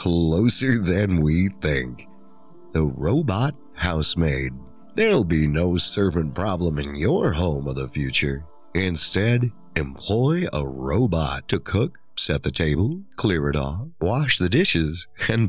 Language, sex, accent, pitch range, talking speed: English, male, American, 75-110 Hz, 130 wpm